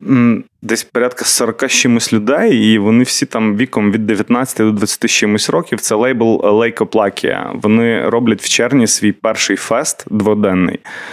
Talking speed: 140 wpm